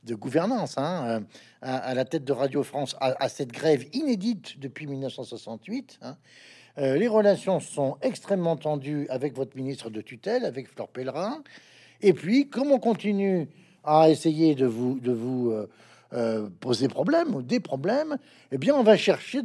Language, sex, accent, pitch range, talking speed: French, male, French, 130-205 Hz, 165 wpm